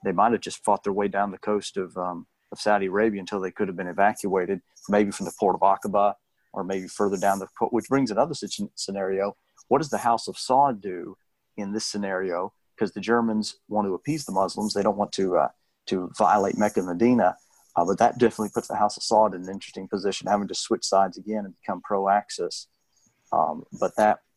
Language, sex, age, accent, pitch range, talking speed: English, male, 40-59, American, 95-105 Hz, 220 wpm